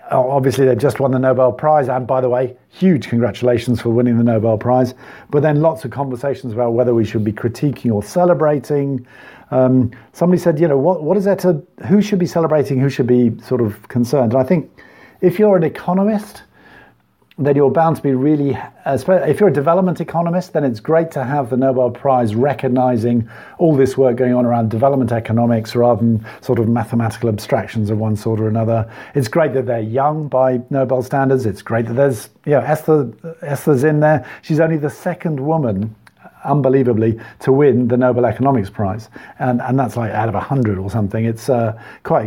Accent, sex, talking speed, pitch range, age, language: British, male, 195 wpm, 120-150 Hz, 50-69, English